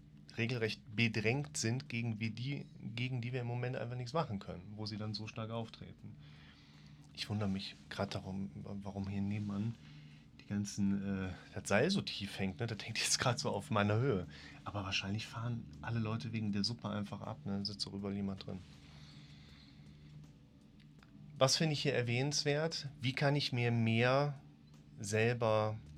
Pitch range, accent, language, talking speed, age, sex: 75-125 Hz, German, German, 170 wpm, 40-59, male